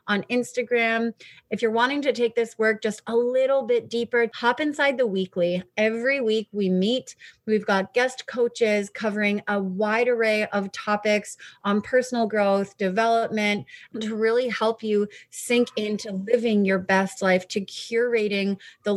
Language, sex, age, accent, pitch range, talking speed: English, female, 30-49, American, 195-240 Hz, 155 wpm